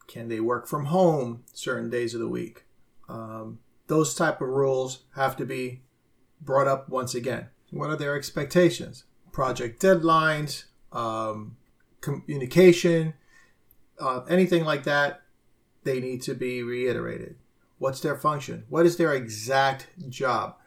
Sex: male